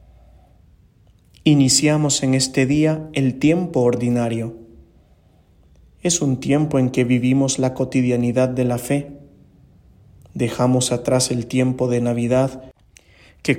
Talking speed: 110 wpm